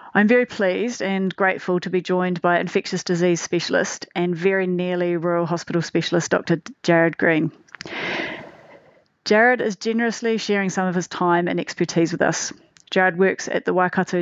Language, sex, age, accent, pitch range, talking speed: English, female, 30-49, Australian, 170-190 Hz, 160 wpm